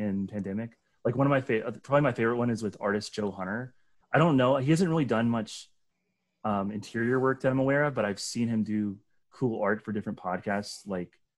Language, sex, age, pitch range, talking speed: English, male, 30-49, 100-120 Hz, 220 wpm